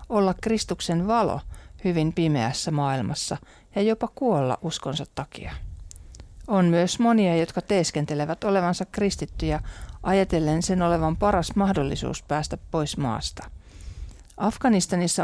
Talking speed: 105 wpm